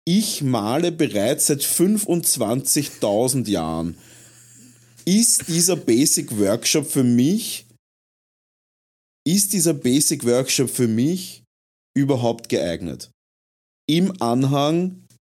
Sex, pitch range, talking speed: male, 120-180 Hz, 65 wpm